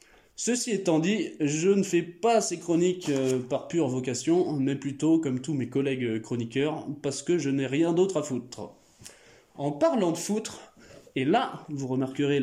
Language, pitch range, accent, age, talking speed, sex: French, 140-185 Hz, French, 20-39, 170 wpm, male